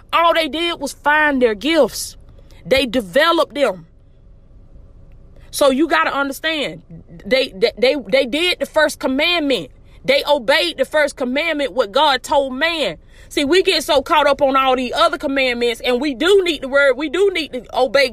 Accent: American